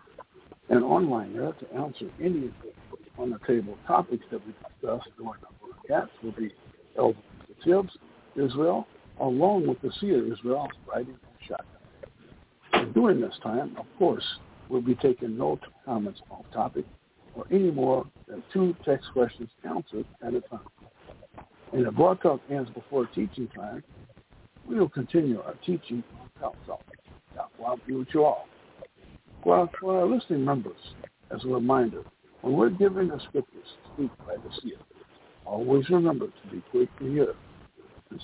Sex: male